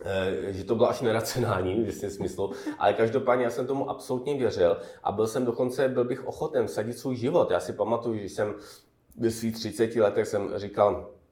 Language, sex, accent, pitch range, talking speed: Czech, male, native, 105-135 Hz, 185 wpm